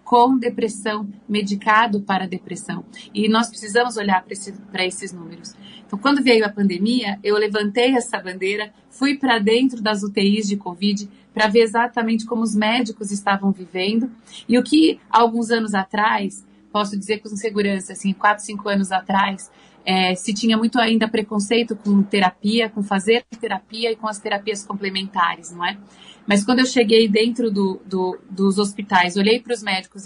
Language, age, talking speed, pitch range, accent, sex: Portuguese, 40-59, 160 wpm, 195-225 Hz, Brazilian, female